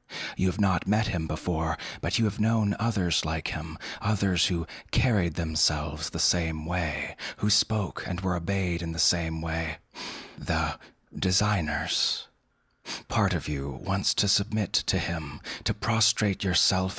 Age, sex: 30-49, male